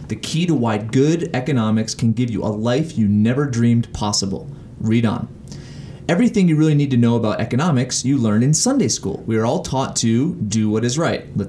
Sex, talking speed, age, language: male, 210 wpm, 30-49, English